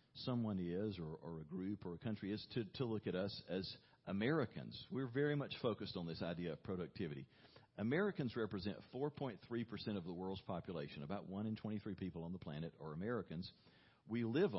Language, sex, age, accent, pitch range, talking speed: English, male, 50-69, American, 95-125 Hz, 185 wpm